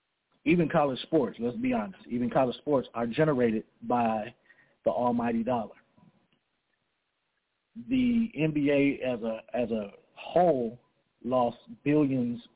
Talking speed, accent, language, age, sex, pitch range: 115 wpm, American, English, 40-59, male, 120-160 Hz